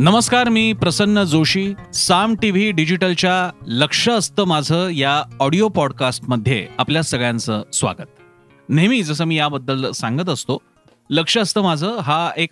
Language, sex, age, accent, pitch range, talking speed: Marathi, male, 30-49, native, 125-185 Hz, 135 wpm